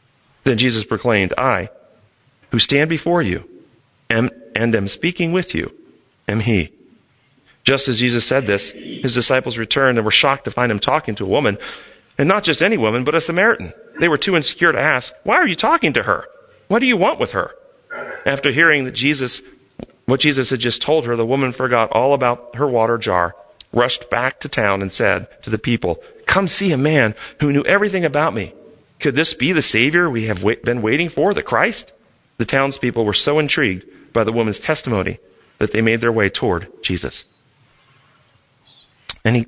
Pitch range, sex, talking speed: 115-165 Hz, male, 190 wpm